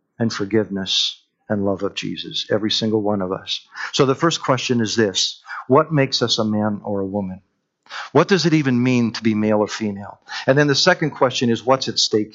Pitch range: 110-155 Hz